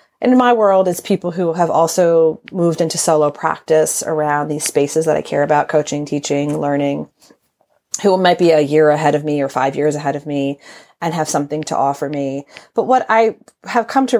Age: 30-49